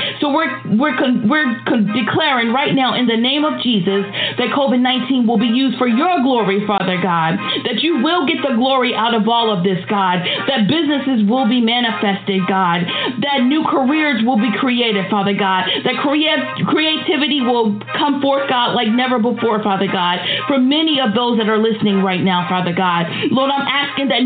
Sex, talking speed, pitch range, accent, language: female, 185 wpm, 210-285 Hz, American, English